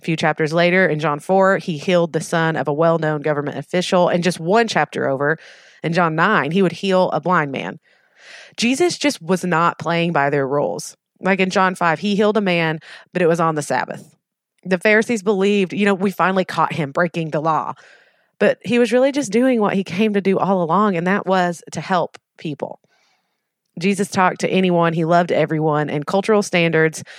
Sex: female